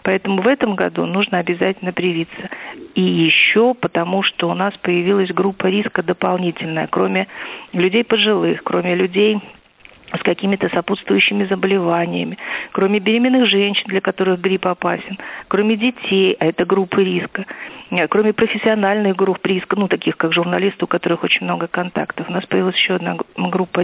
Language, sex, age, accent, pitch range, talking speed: Russian, female, 50-69, native, 175-200 Hz, 145 wpm